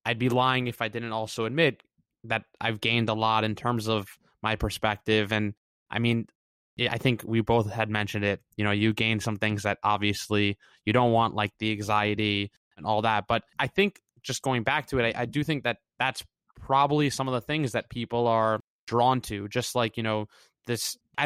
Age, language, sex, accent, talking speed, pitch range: 20-39, English, male, American, 210 wpm, 110-125 Hz